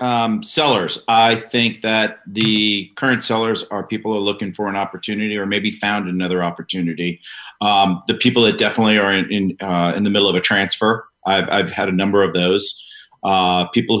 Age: 40-59